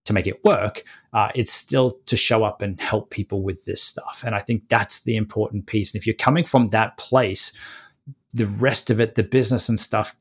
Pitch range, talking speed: 105-125 Hz, 225 wpm